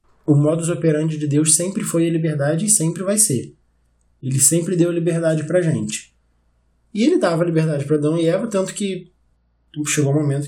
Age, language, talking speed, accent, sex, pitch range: 20-39, Portuguese, 190 wpm, Brazilian, male, 145-185 Hz